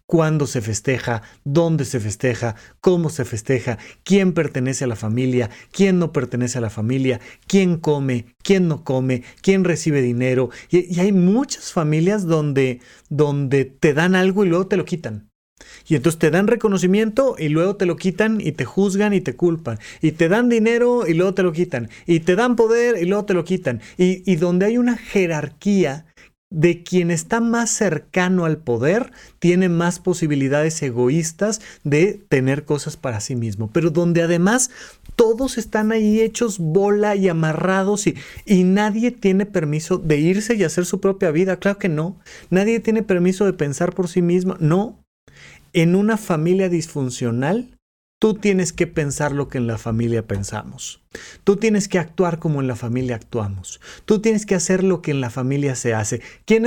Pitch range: 135-195 Hz